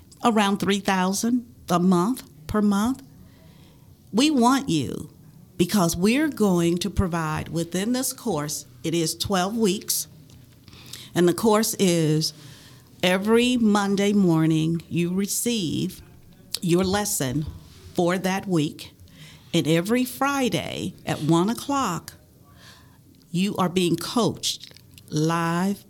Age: 50-69